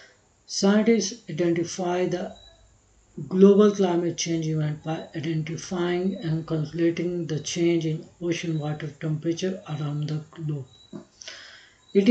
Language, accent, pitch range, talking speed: English, Indian, 150-185 Hz, 105 wpm